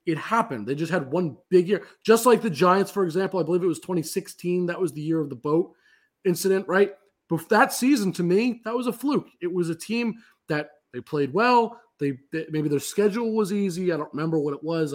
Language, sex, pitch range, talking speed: English, male, 150-200 Hz, 235 wpm